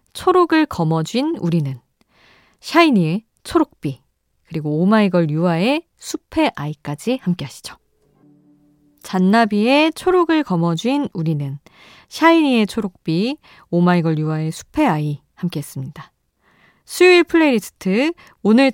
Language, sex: Korean, female